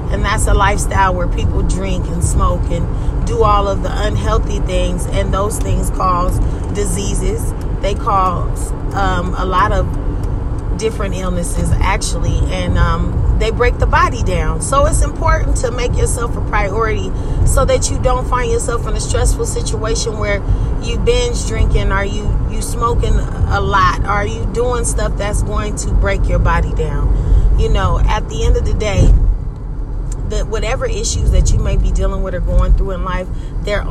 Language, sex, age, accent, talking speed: English, female, 30-49, American, 175 wpm